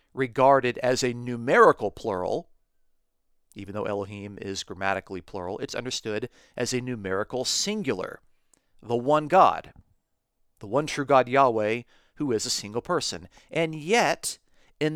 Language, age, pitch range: English, 40-59, 100-140 Hz